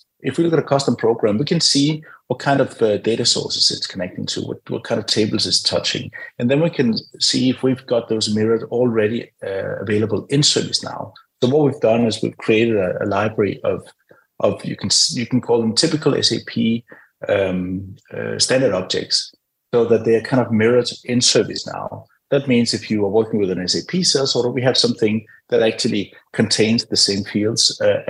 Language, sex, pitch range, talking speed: English, male, 110-135 Hz, 205 wpm